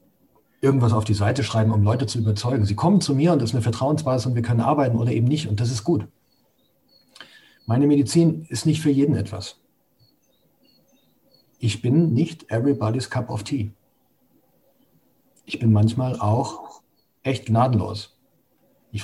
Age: 40-59